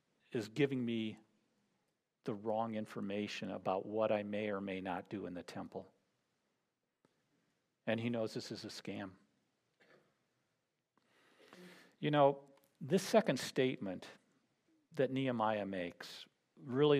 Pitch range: 105-130 Hz